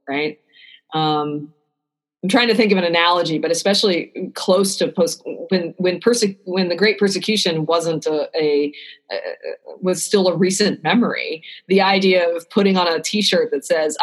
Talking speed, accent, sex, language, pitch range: 165 wpm, American, female, English, 160-210 Hz